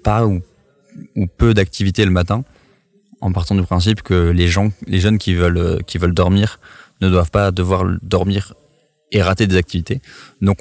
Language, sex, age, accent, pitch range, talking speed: French, male, 20-39, French, 90-105 Hz, 175 wpm